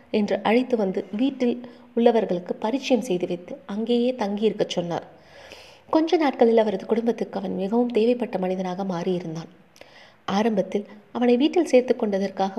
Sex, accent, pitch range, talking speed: female, native, 195-245 Hz, 115 wpm